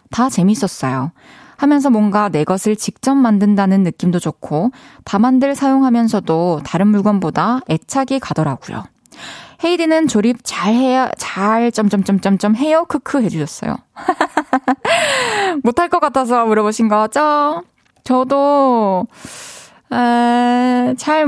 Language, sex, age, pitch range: Korean, female, 20-39, 185-270 Hz